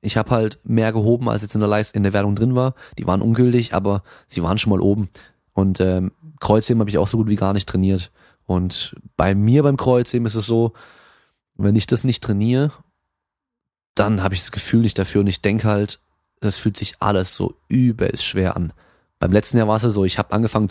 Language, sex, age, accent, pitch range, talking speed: German, male, 20-39, German, 95-110 Hz, 225 wpm